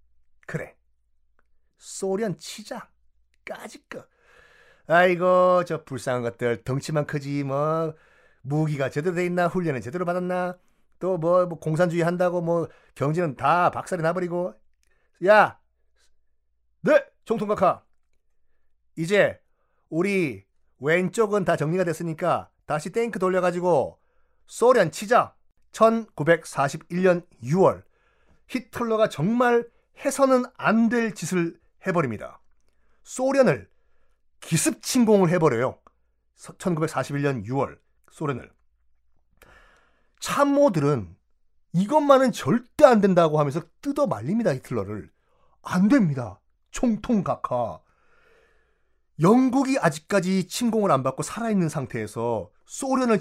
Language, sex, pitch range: Korean, male, 135-210 Hz